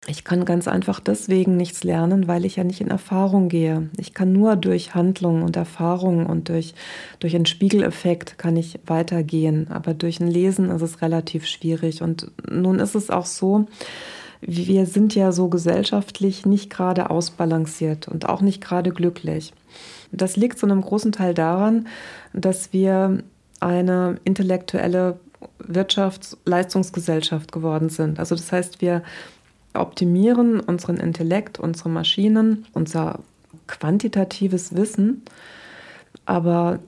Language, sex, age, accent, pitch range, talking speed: German, female, 30-49, German, 165-195 Hz, 135 wpm